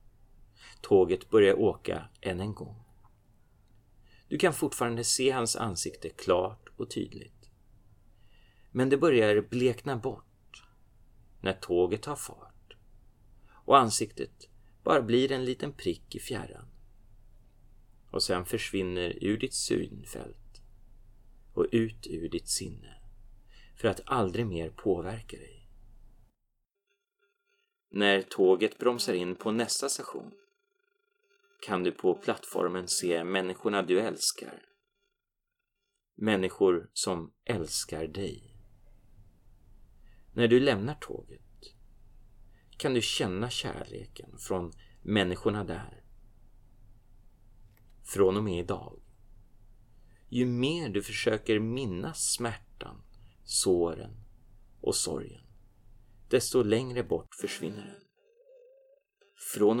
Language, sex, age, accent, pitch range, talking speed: Swedish, male, 30-49, native, 100-125 Hz, 100 wpm